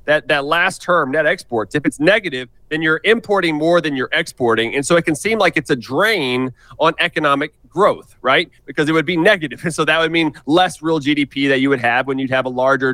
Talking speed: 230 wpm